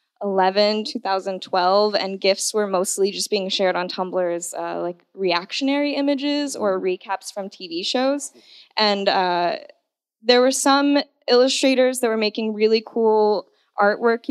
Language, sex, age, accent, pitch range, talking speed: English, female, 10-29, American, 195-250 Hz, 135 wpm